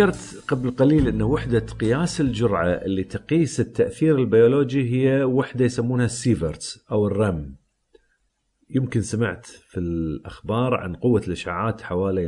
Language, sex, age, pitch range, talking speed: Arabic, male, 40-59, 90-120 Hz, 115 wpm